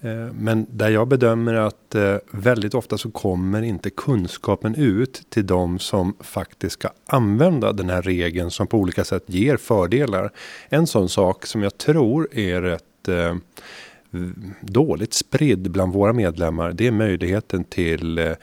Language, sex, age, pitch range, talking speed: Swedish, male, 30-49, 90-115 Hz, 145 wpm